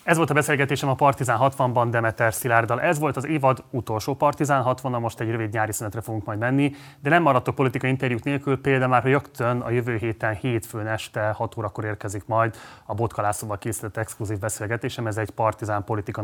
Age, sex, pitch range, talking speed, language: 30-49, male, 105-125 Hz, 190 wpm, Hungarian